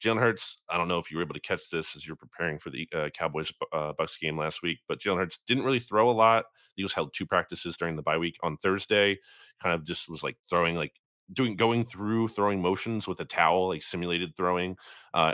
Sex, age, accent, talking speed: male, 30-49, American, 245 wpm